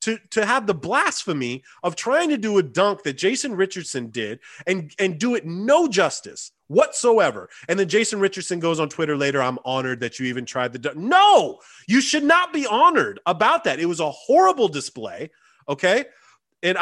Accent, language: American, English